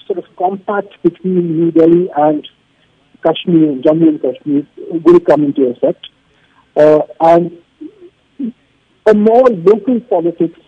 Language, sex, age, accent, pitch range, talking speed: English, male, 50-69, Indian, 155-220 Hz, 125 wpm